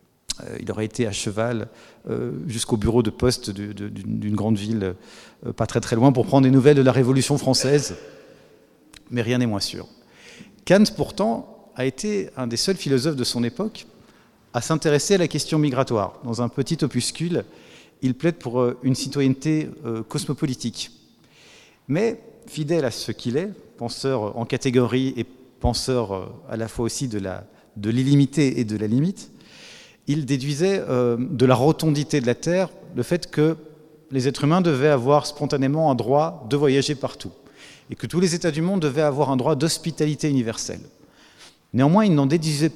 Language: French